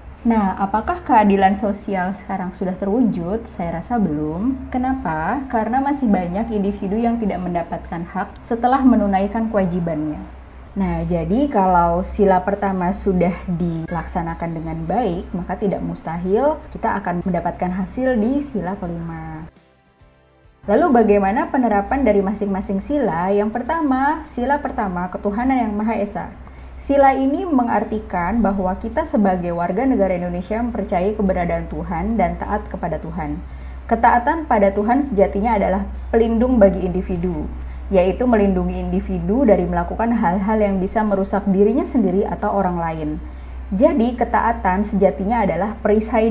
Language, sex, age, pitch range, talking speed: Indonesian, female, 20-39, 180-230 Hz, 125 wpm